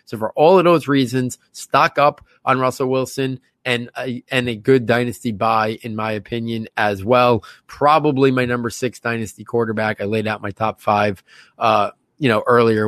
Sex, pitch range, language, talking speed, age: male, 120-145 Hz, English, 180 wpm, 30-49